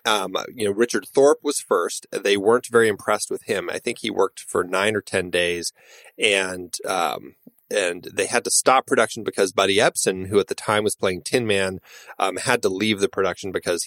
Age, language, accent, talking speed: 30-49, English, American, 210 wpm